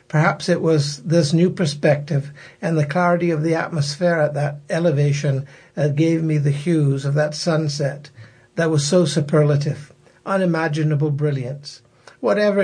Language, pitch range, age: English, 145-170 Hz, 60-79